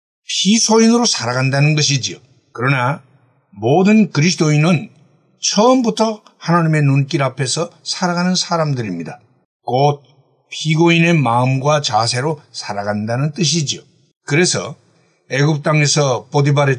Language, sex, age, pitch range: Korean, male, 60-79, 130-180 Hz